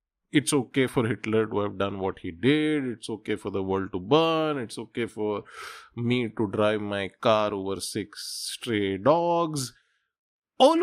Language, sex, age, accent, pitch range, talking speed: English, male, 20-39, Indian, 105-155 Hz, 165 wpm